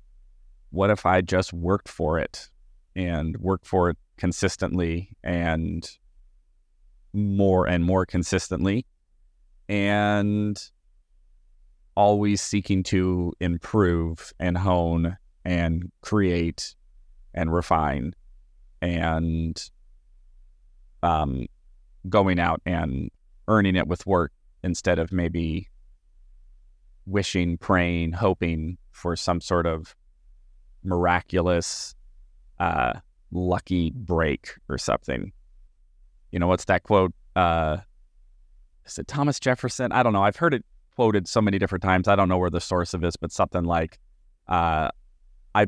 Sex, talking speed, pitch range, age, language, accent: male, 115 wpm, 80-95 Hz, 30-49, English, American